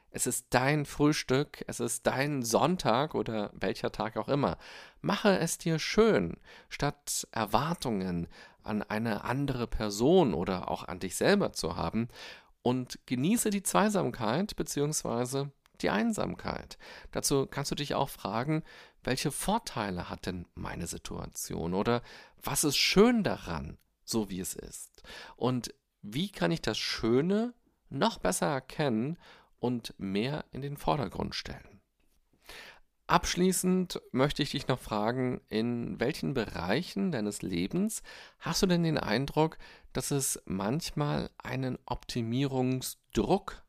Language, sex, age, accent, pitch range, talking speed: German, male, 40-59, German, 115-170 Hz, 130 wpm